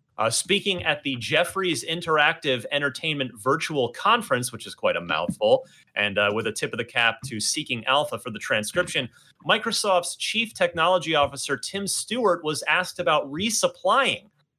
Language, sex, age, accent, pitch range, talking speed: English, male, 30-49, American, 125-180 Hz, 155 wpm